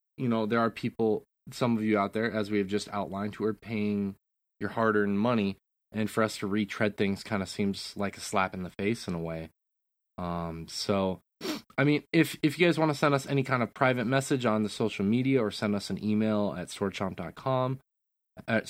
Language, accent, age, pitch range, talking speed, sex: English, American, 20-39, 100-125 Hz, 220 wpm, male